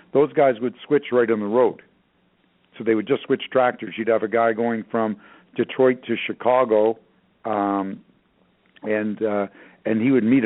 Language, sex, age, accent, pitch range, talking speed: English, male, 60-79, American, 110-125 Hz, 170 wpm